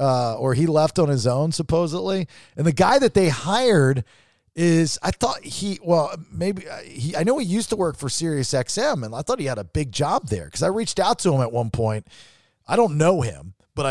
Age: 40-59